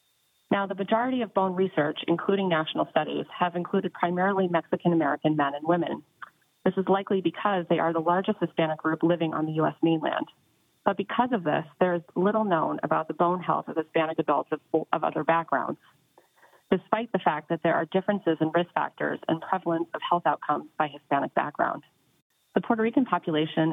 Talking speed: 180 wpm